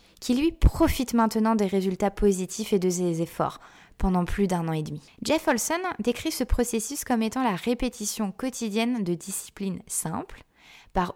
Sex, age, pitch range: female, 20-39, 190-250 Hz